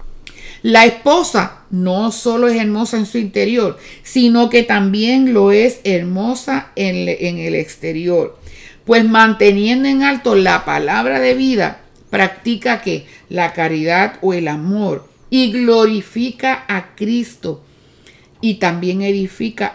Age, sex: 50-69, female